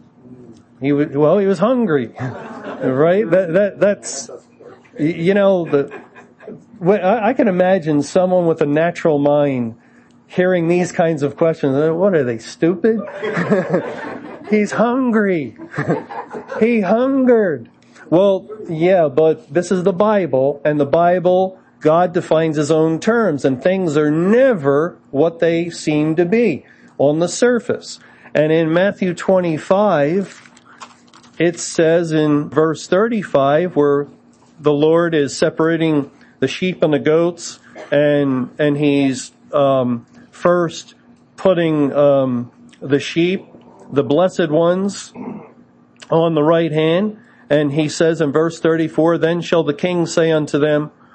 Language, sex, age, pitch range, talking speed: English, male, 40-59, 145-185 Hz, 130 wpm